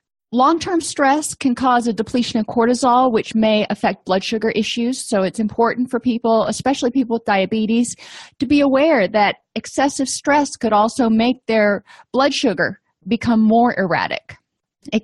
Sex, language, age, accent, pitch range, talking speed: female, English, 30-49, American, 215-260 Hz, 160 wpm